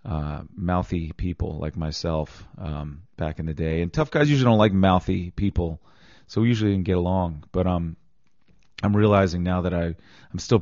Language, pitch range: English, 85-105 Hz